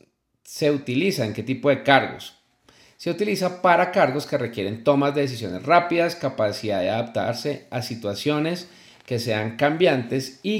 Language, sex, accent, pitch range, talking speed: Spanish, male, Colombian, 125-170 Hz, 145 wpm